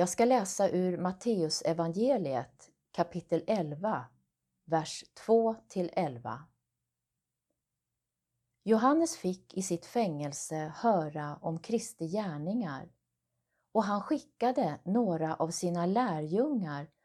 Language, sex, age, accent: Swedish, female, 30-49, native